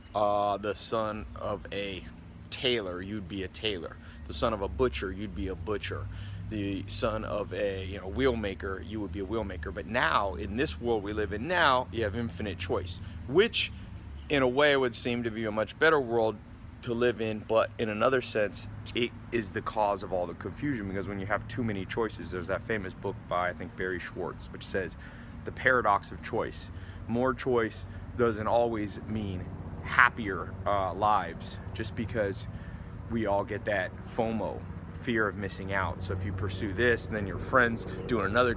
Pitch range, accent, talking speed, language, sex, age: 95-115 Hz, American, 190 wpm, English, male, 30-49